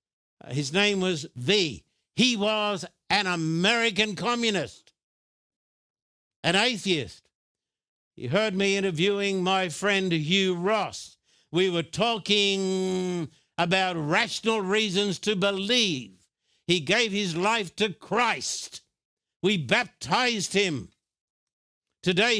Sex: male